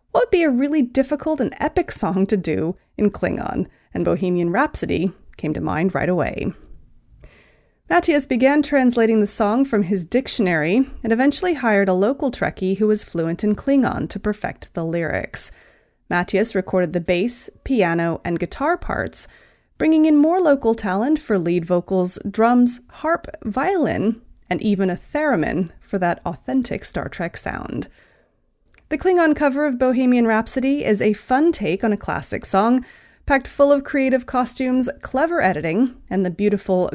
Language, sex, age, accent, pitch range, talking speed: English, female, 30-49, American, 185-275 Hz, 155 wpm